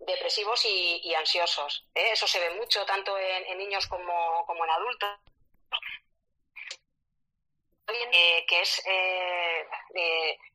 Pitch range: 170-205 Hz